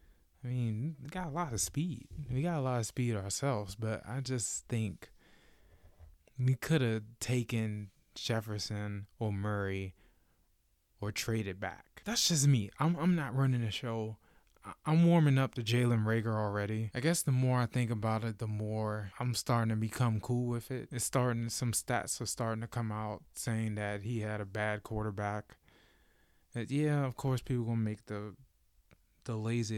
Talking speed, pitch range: 180 wpm, 105-125 Hz